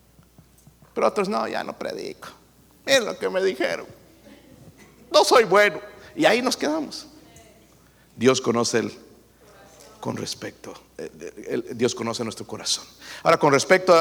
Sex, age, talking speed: male, 50-69, 130 wpm